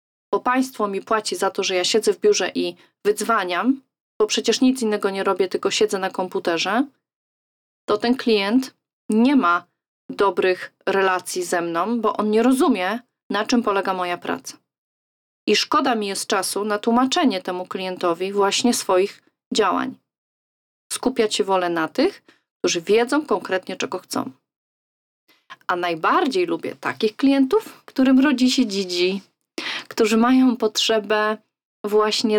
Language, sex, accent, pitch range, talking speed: Polish, female, native, 195-250 Hz, 140 wpm